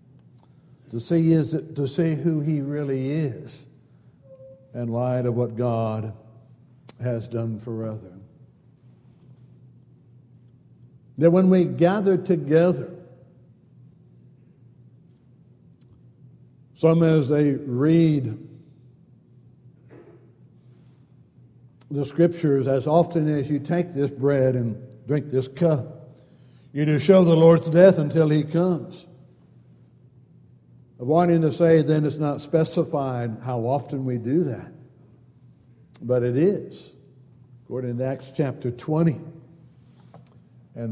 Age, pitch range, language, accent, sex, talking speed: 60-79, 125-160 Hz, English, American, male, 105 wpm